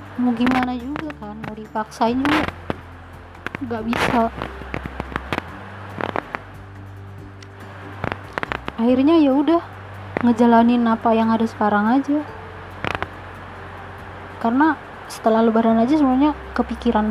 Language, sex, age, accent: Indonesian, female, 20-39, native